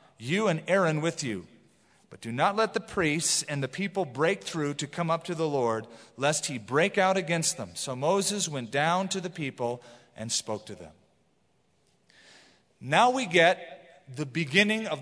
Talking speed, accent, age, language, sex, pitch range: 180 wpm, American, 40-59, English, male, 140-185 Hz